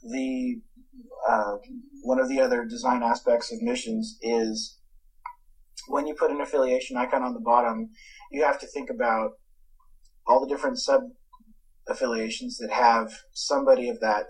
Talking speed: 145 wpm